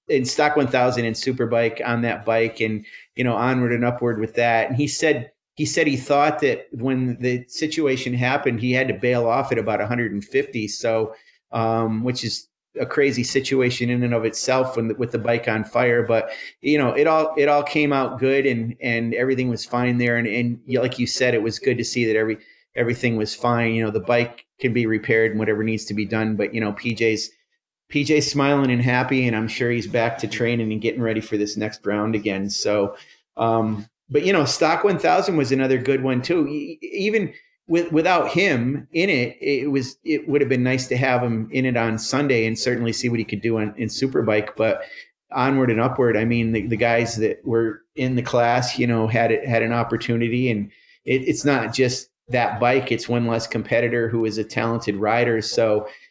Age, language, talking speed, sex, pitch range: 40-59, English, 215 wpm, male, 115-130 Hz